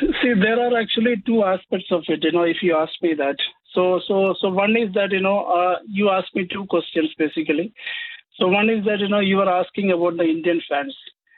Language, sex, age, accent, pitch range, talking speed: Danish, male, 50-69, Indian, 175-215 Hz, 225 wpm